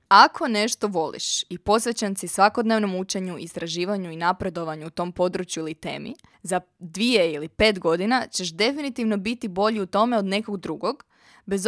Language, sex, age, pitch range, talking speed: Croatian, female, 20-39, 180-220 Hz, 160 wpm